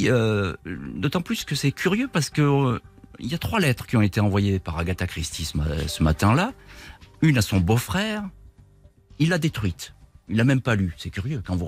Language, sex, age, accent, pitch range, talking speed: French, male, 50-69, French, 90-125 Hz, 200 wpm